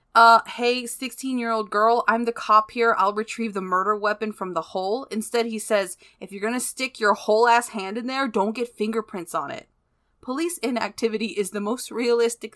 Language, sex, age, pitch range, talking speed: English, female, 20-39, 190-240 Hz, 190 wpm